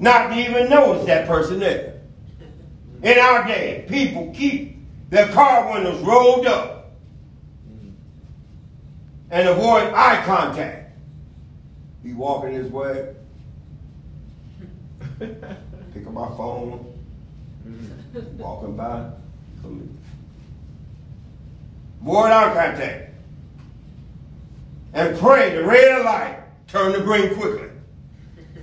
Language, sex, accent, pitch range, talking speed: English, male, American, 155-235 Hz, 90 wpm